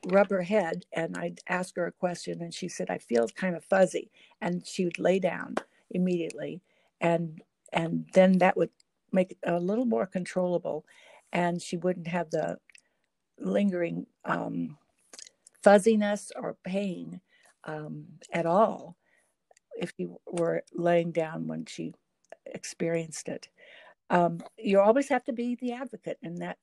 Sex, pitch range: female, 170-195 Hz